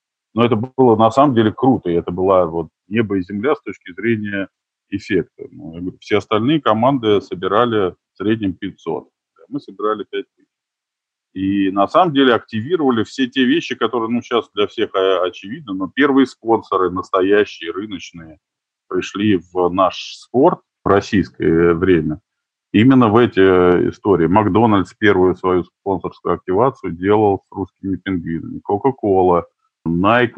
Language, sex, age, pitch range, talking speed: Russian, male, 20-39, 90-125 Hz, 140 wpm